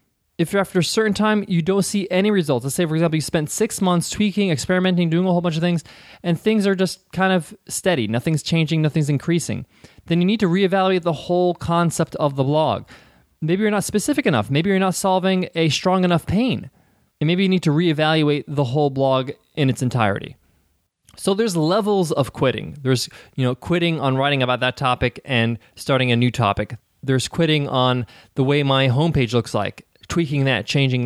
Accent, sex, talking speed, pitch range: American, male, 205 wpm, 130-180 Hz